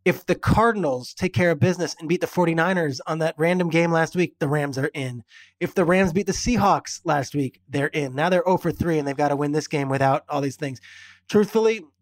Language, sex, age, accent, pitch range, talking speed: English, male, 20-39, American, 145-175 Hz, 240 wpm